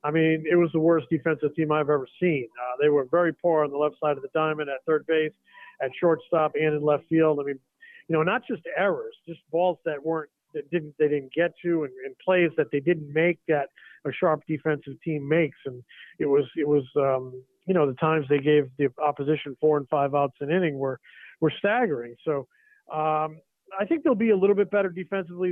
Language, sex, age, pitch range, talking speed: English, male, 40-59, 150-175 Hz, 230 wpm